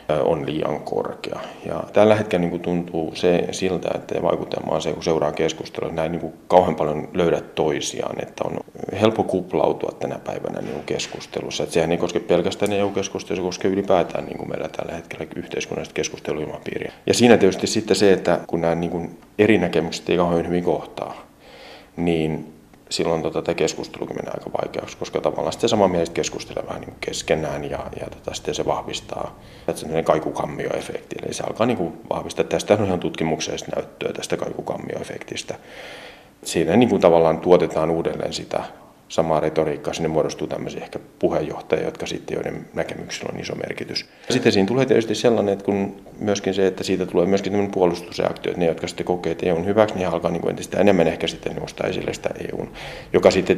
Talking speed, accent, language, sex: 170 wpm, native, Finnish, male